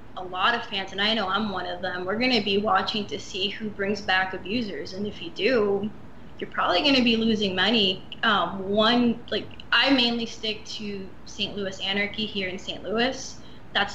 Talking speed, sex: 205 wpm, female